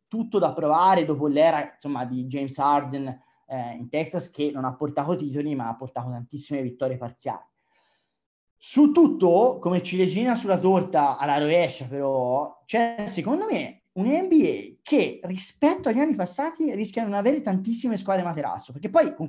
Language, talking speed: Italian, 160 wpm